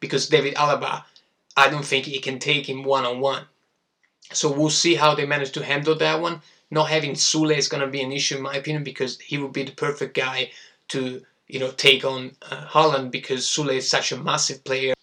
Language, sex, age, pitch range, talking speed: Italian, male, 20-39, 130-150 Hz, 215 wpm